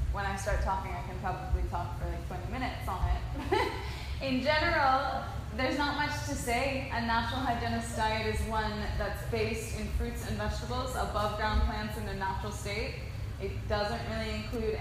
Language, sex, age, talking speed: English, female, 20-39, 180 wpm